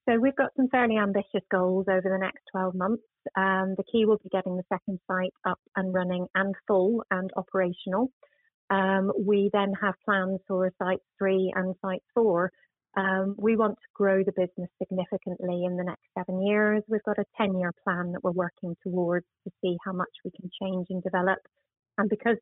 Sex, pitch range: female, 185-200 Hz